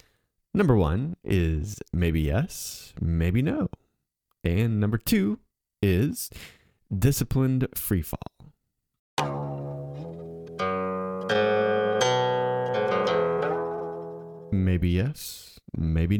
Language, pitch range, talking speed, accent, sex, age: English, 85-125 Hz, 60 wpm, American, male, 30-49